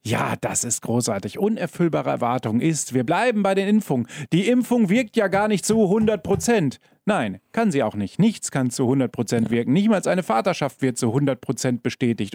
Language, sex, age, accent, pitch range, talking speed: German, male, 40-59, German, 125-185 Hz, 185 wpm